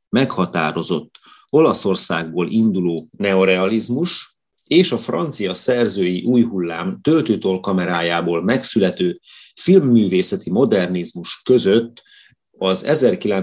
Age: 30-49